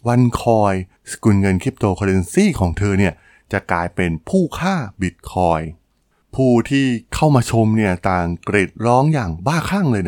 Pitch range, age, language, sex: 95-130 Hz, 20-39, Thai, male